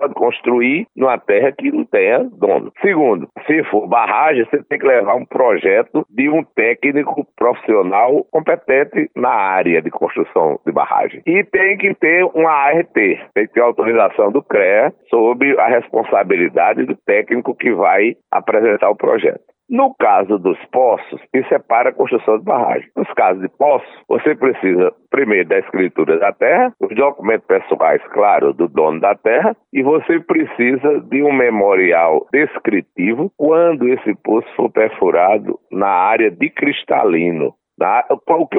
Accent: Brazilian